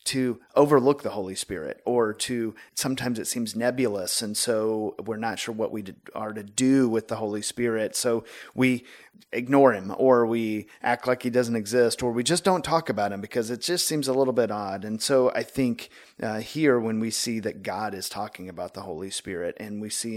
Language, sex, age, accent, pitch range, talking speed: English, male, 30-49, American, 105-135 Hz, 210 wpm